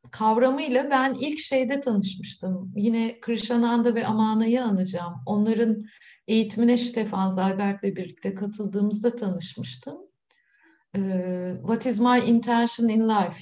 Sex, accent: female, native